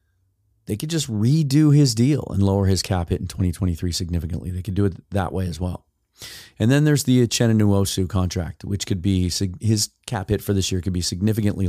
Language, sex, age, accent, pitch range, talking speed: English, male, 30-49, American, 90-110 Hz, 205 wpm